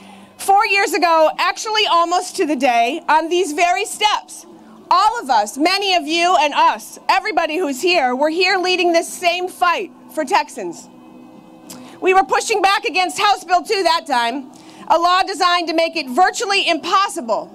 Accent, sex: American, female